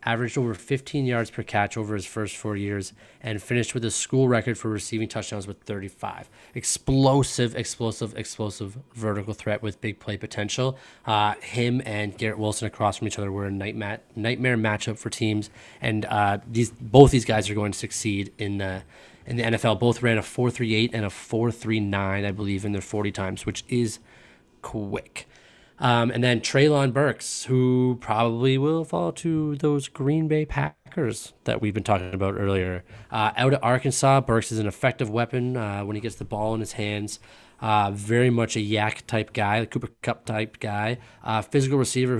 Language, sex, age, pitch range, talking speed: English, male, 20-39, 105-120 Hz, 185 wpm